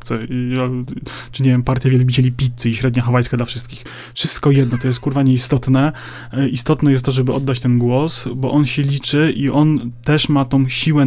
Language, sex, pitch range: Polish, male, 125-145 Hz